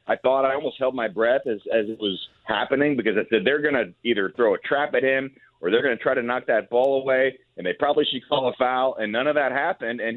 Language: English